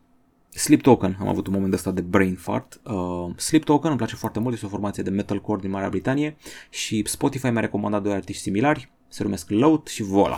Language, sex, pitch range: Romanian, male, 100-125 Hz